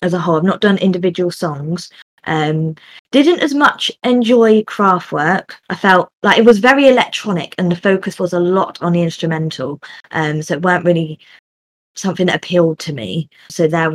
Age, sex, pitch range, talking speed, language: 20-39, female, 160-200 Hz, 190 wpm, English